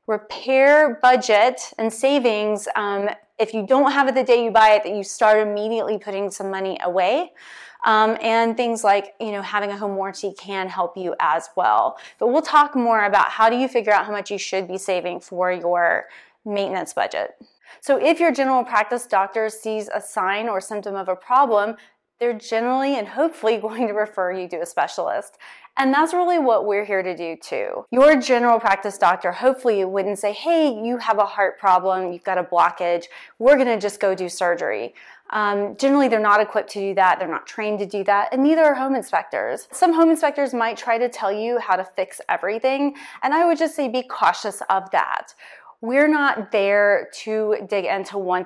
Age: 30-49